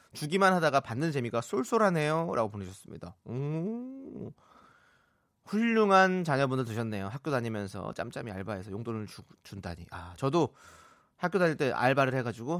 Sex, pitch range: male, 110-160 Hz